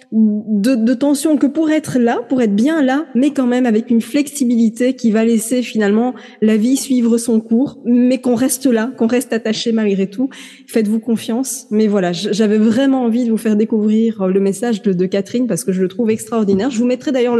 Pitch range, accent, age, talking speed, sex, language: 220-265 Hz, French, 20-39, 210 wpm, female, French